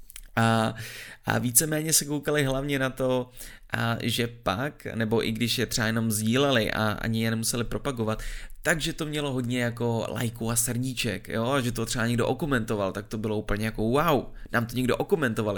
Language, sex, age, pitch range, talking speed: Czech, male, 20-39, 110-135 Hz, 185 wpm